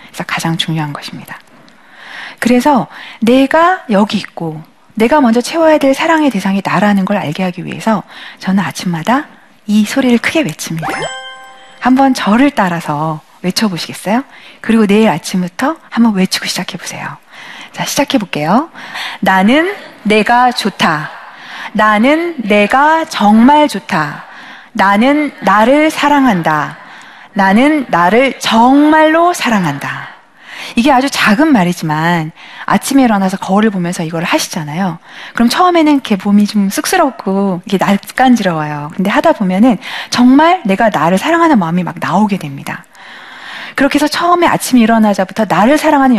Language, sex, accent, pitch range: Korean, female, native, 190-270 Hz